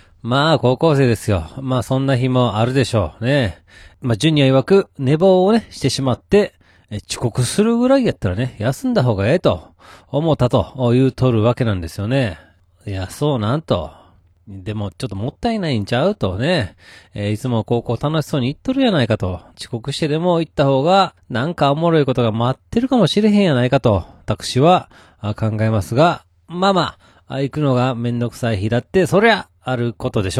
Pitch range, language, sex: 105-145 Hz, Japanese, male